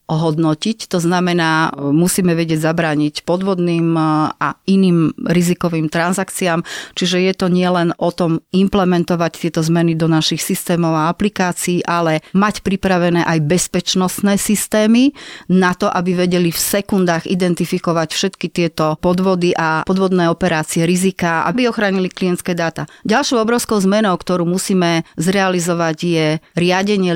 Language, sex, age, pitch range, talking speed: Slovak, female, 30-49, 165-185 Hz, 125 wpm